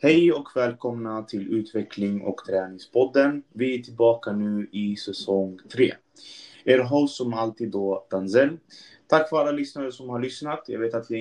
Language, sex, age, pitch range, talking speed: Swedish, male, 20-39, 100-120 Hz, 165 wpm